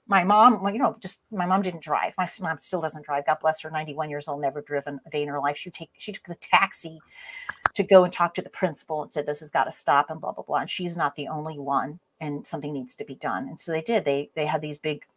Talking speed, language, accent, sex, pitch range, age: 285 wpm, English, American, female, 160-210 Hz, 40-59